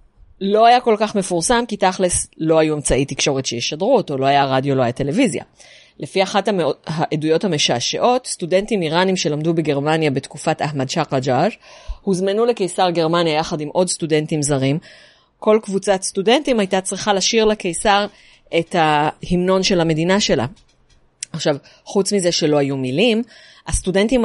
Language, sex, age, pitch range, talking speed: Hebrew, female, 30-49, 145-195 Hz, 145 wpm